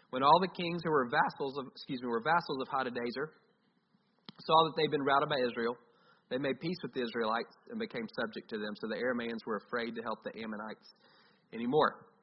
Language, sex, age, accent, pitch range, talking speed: English, male, 30-49, American, 130-195 Hz, 210 wpm